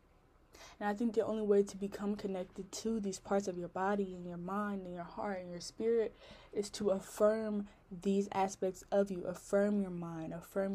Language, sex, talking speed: English, female, 195 wpm